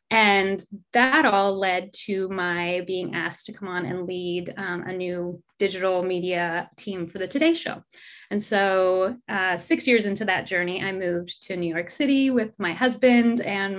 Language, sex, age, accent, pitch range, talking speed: English, female, 20-39, American, 195-255 Hz, 180 wpm